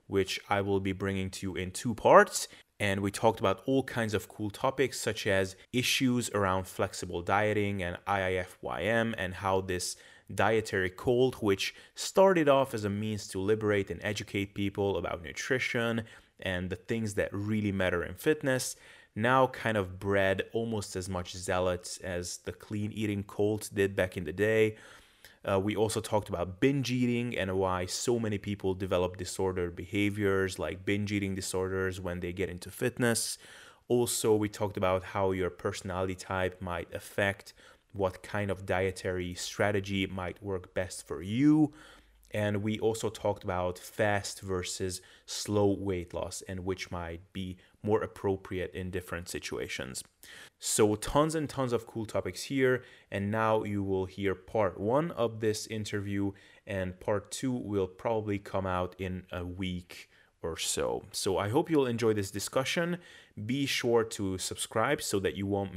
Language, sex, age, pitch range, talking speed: English, male, 20-39, 95-110 Hz, 165 wpm